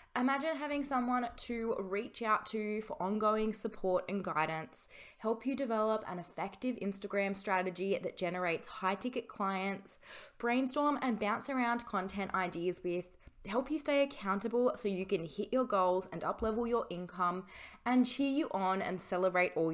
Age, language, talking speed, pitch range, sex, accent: 20-39, English, 160 wpm, 185-240 Hz, female, Australian